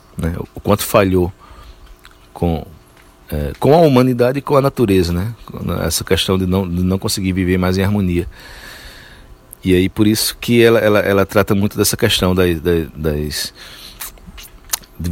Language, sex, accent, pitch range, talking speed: Portuguese, male, Brazilian, 85-105 Hz, 165 wpm